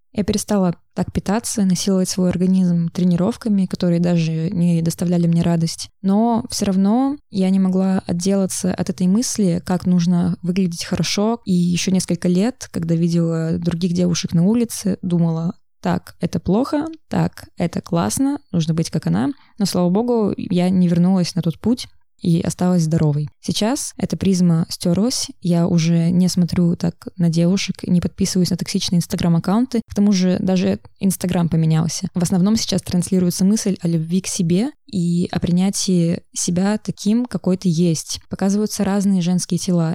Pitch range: 175-200 Hz